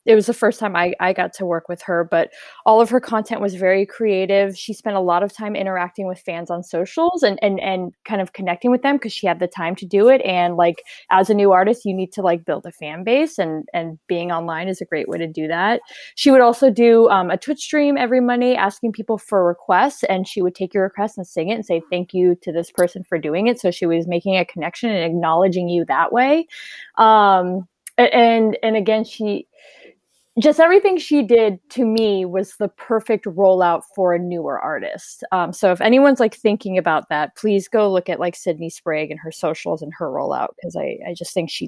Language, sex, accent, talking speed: English, female, American, 235 wpm